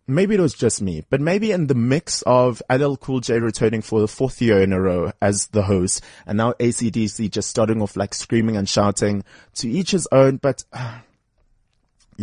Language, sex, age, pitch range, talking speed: English, male, 30-49, 105-135 Hz, 200 wpm